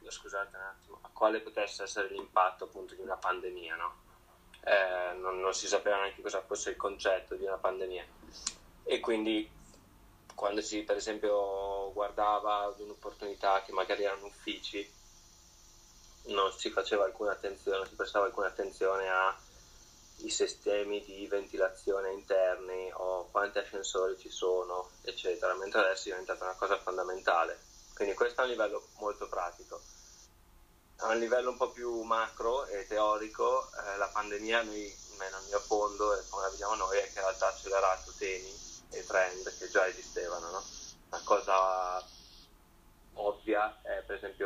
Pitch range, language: 95-115 Hz, Italian